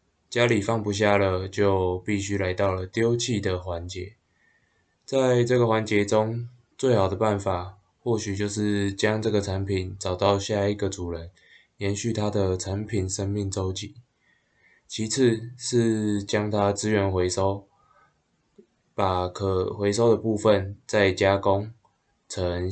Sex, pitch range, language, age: male, 95-110 Hz, Chinese, 20-39